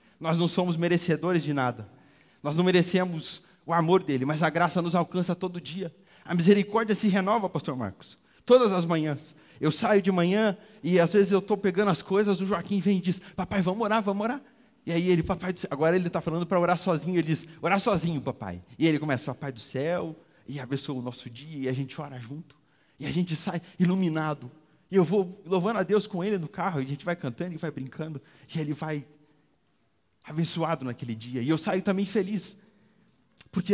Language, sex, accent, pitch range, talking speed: Portuguese, male, Brazilian, 145-195 Hz, 210 wpm